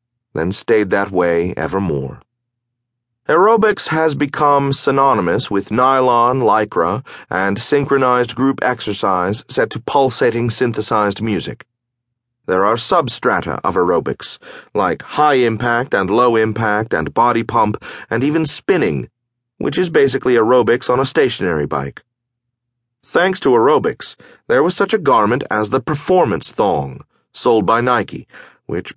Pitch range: 110-135 Hz